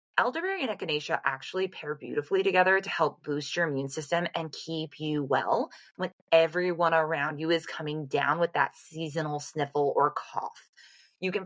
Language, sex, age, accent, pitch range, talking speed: English, female, 20-39, American, 150-185 Hz, 170 wpm